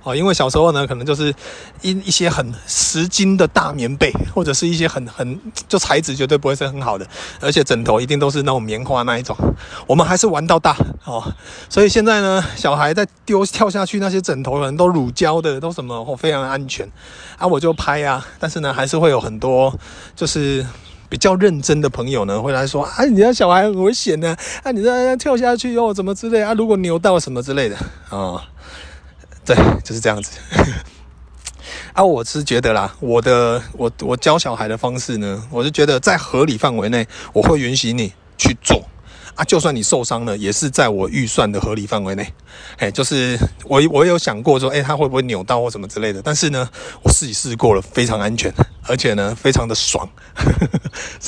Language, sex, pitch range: Chinese, male, 110-160 Hz